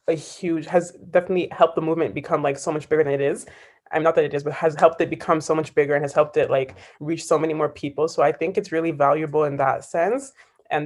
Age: 20-39